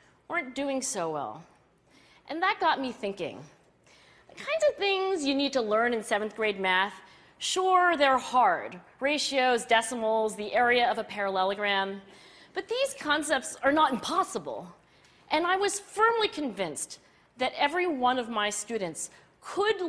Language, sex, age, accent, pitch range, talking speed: English, female, 40-59, American, 225-320 Hz, 150 wpm